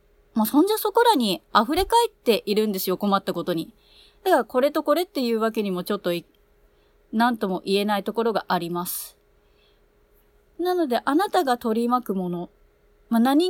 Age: 30-49